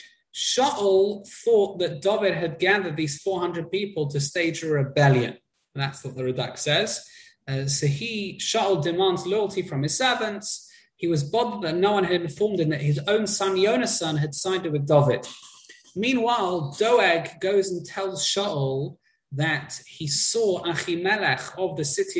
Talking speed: 160 wpm